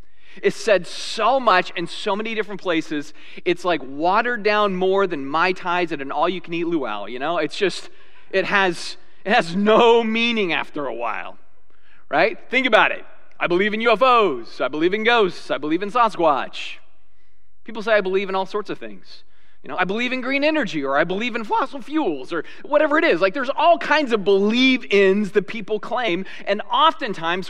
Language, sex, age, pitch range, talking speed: English, male, 30-49, 175-235 Hz, 190 wpm